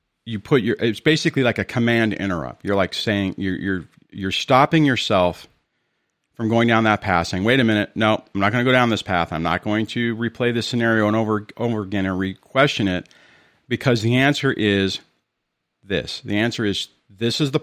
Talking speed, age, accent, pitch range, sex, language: 210 wpm, 40-59, American, 95-125 Hz, male, English